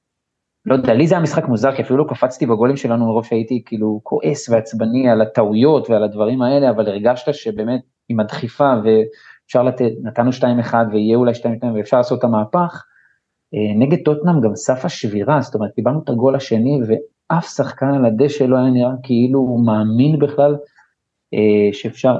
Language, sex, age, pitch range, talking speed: Hebrew, male, 30-49, 115-140 Hz, 170 wpm